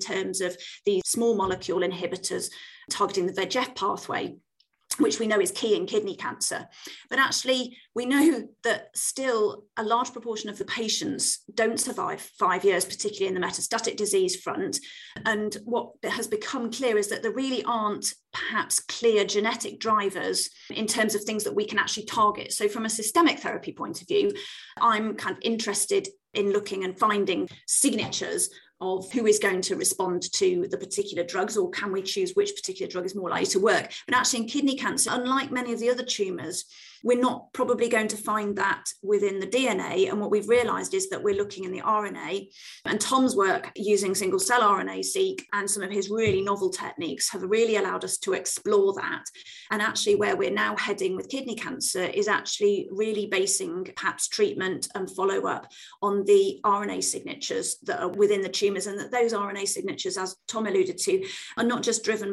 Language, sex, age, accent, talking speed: English, female, 30-49, British, 190 wpm